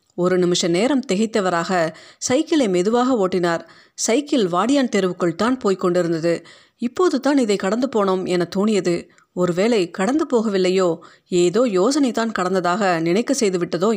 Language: Tamil